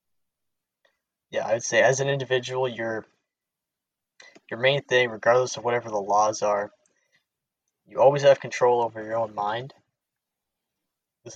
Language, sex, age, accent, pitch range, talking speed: English, male, 20-39, American, 110-130 Hz, 130 wpm